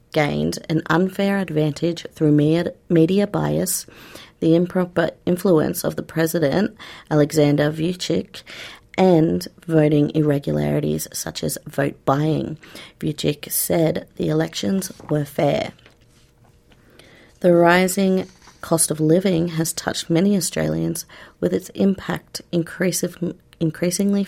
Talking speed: 100 wpm